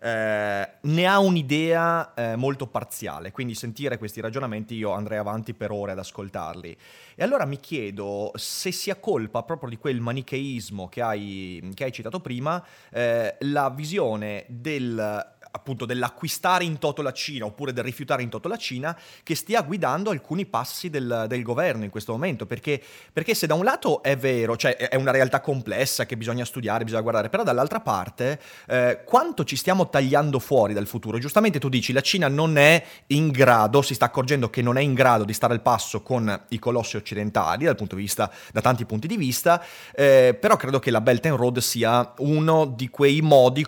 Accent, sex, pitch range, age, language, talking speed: native, male, 110-145 Hz, 30-49, Italian, 190 wpm